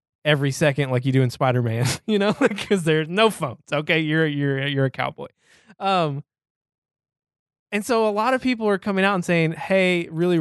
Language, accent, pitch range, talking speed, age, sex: English, American, 130-170 Hz, 190 wpm, 20-39, male